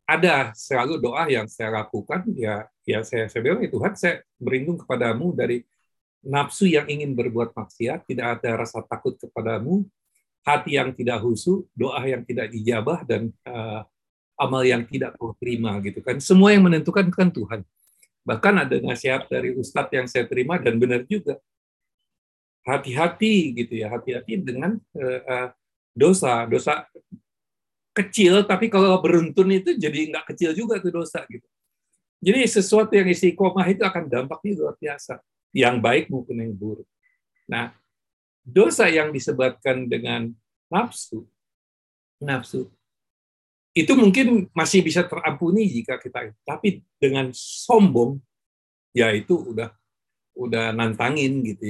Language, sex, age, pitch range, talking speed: Indonesian, male, 50-69, 115-180 Hz, 135 wpm